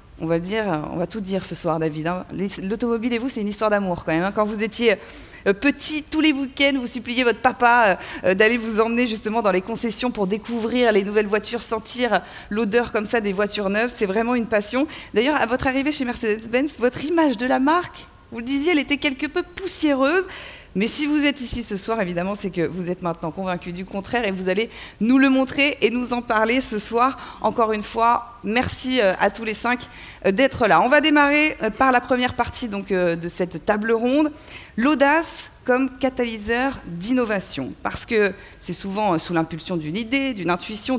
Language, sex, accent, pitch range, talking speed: French, female, French, 195-255 Hz, 200 wpm